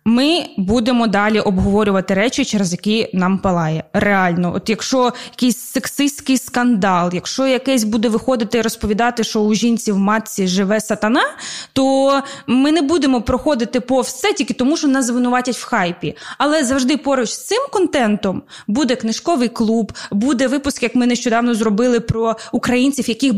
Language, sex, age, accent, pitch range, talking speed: Ukrainian, female, 20-39, native, 220-280 Hz, 155 wpm